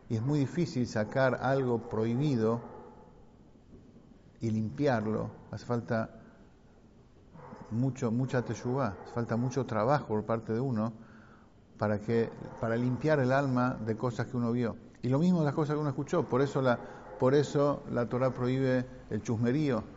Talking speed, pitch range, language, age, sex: 150 wpm, 115-140 Hz, English, 50-69, male